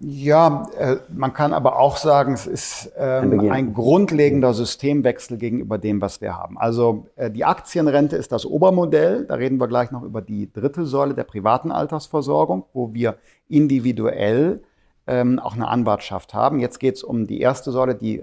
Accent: German